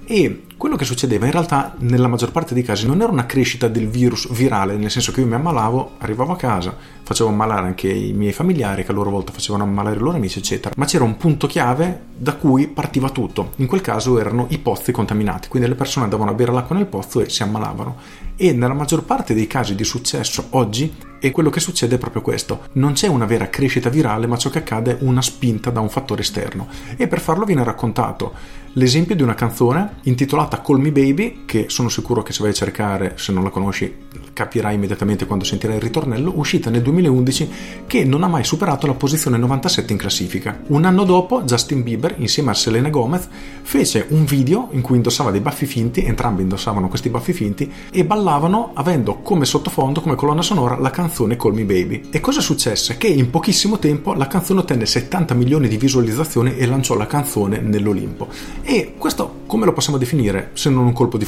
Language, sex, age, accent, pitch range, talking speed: Italian, male, 40-59, native, 110-145 Hz, 210 wpm